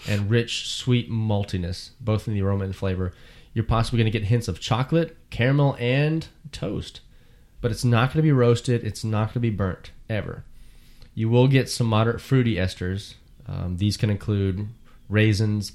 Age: 20-39